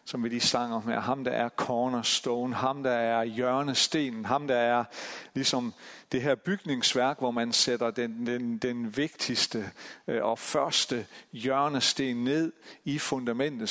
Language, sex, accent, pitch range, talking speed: Danish, male, native, 115-135 Hz, 140 wpm